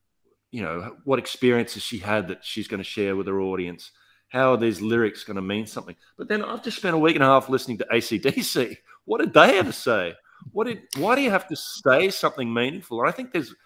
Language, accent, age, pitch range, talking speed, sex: English, Australian, 30-49, 90-125 Hz, 235 wpm, male